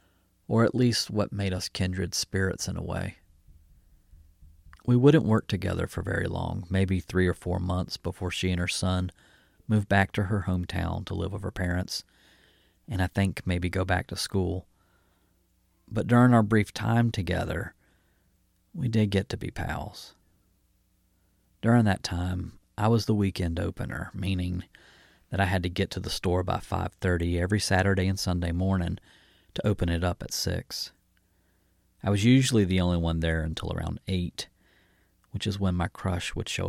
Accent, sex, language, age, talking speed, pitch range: American, male, English, 40-59, 170 wpm, 90-105 Hz